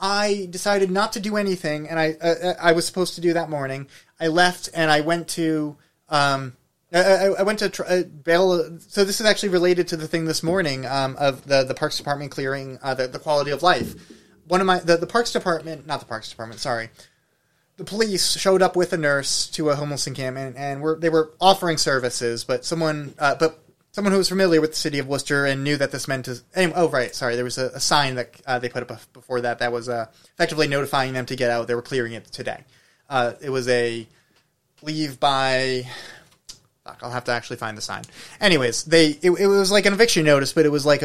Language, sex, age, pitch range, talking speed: English, male, 30-49, 125-170 Hz, 230 wpm